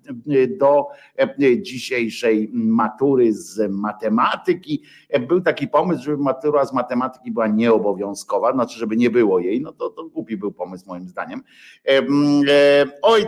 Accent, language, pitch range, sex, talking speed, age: native, Polish, 125-180 Hz, male, 125 wpm, 50-69